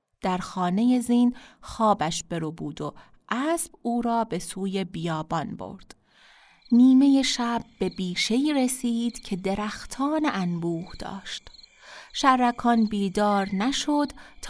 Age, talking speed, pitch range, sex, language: 30-49, 110 wpm, 195-260 Hz, female, Persian